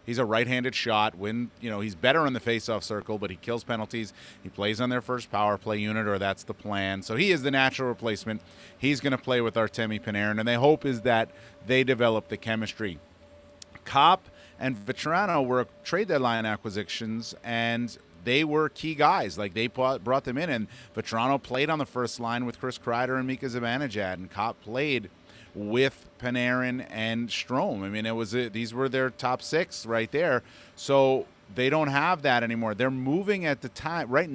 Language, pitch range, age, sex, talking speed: English, 105-130 Hz, 30-49, male, 195 wpm